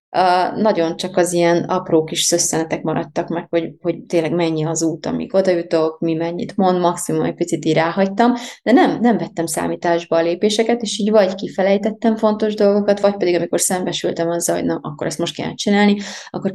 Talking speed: 190 wpm